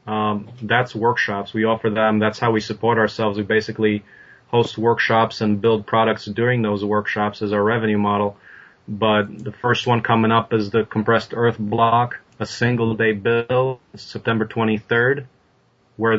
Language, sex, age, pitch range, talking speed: English, male, 30-49, 105-120 Hz, 160 wpm